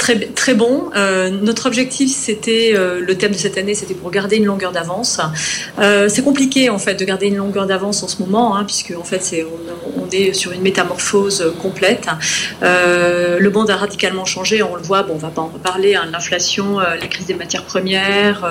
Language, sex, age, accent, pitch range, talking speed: French, female, 30-49, French, 180-210 Hz, 220 wpm